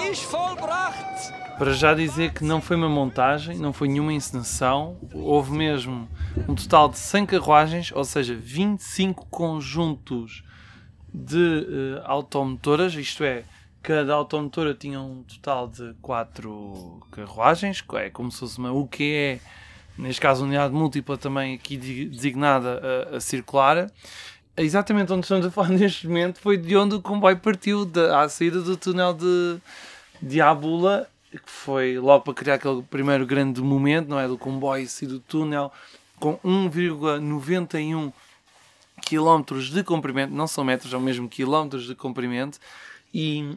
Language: Portuguese